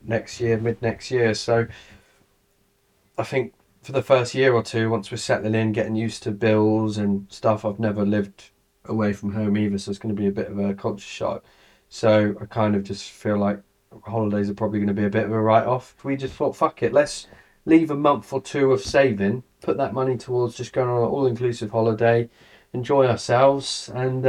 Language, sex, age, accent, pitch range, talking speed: English, male, 20-39, British, 100-120 Hz, 210 wpm